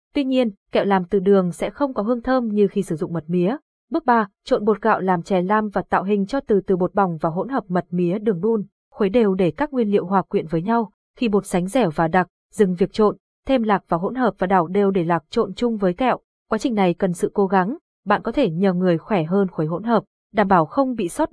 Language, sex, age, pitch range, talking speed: Vietnamese, female, 20-39, 185-230 Hz, 265 wpm